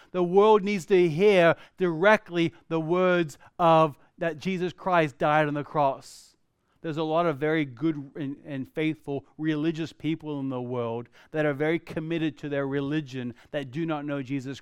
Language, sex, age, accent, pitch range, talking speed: English, male, 30-49, American, 155-205 Hz, 170 wpm